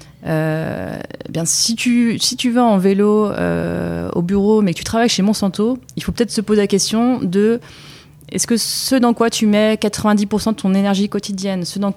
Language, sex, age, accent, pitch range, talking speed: French, female, 20-39, French, 155-200 Hz, 205 wpm